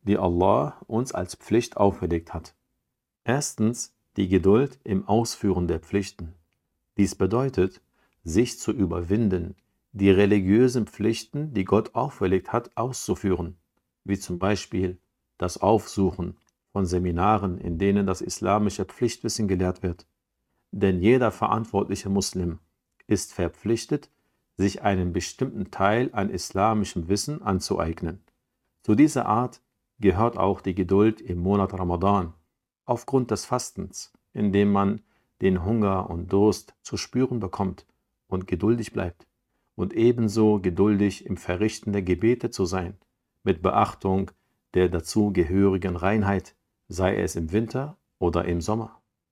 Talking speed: 125 wpm